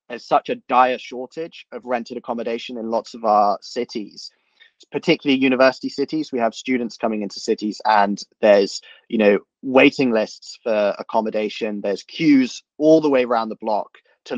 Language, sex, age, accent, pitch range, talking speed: English, male, 30-49, British, 110-135 Hz, 165 wpm